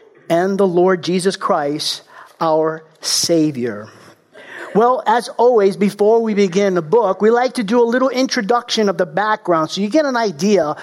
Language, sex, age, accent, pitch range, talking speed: English, male, 50-69, American, 175-225 Hz, 165 wpm